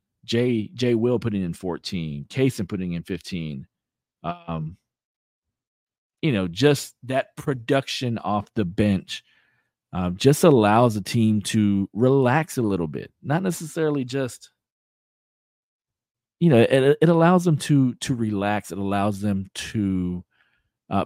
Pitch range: 100-130 Hz